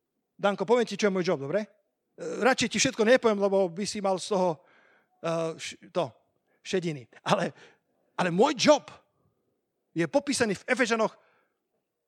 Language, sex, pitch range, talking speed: Slovak, male, 160-210 Hz, 145 wpm